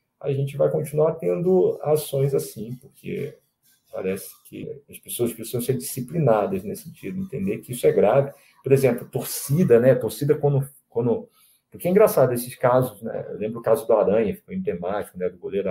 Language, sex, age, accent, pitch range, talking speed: Portuguese, male, 40-59, Brazilian, 115-195 Hz, 185 wpm